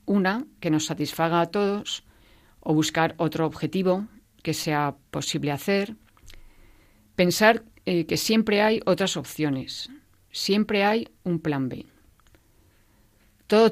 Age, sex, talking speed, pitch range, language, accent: 40-59, female, 120 wpm, 145-180 Hz, Spanish, Spanish